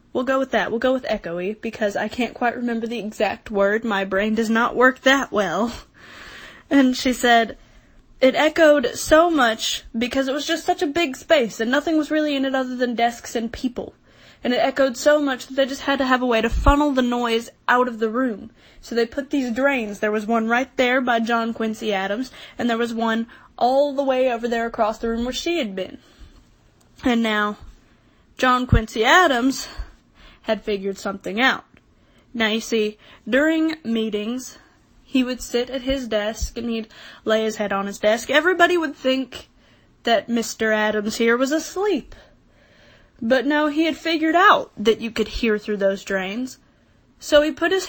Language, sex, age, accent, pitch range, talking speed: English, female, 10-29, American, 225-275 Hz, 195 wpm